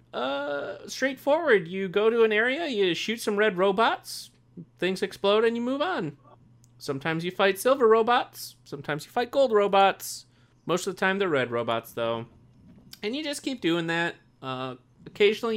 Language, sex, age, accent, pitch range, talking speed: English, male, 30-49, American, 130-195 Hz, 170 wpm